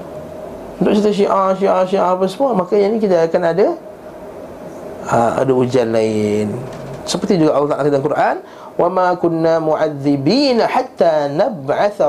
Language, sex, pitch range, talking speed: Malay, male, 135-195 Hz, 145 wpm